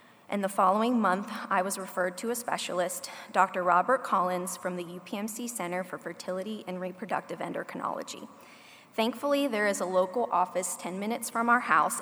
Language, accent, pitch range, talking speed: English, American, 185-240 Hz, 165 wpm